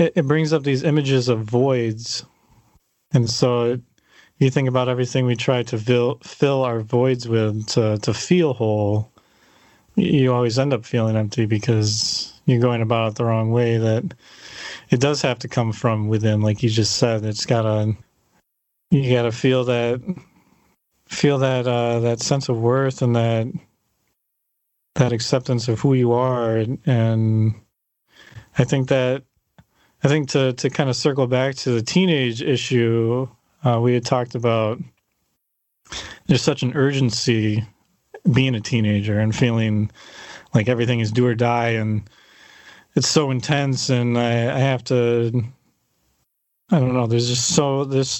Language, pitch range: English, 115-135 Hz